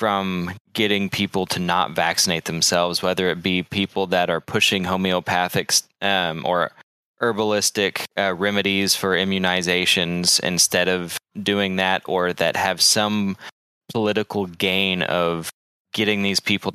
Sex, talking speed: male, 130 wpm